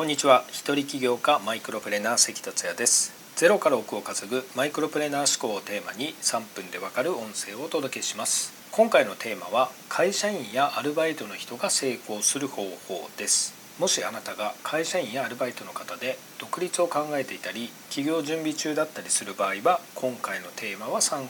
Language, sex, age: Japanese, male, 40-59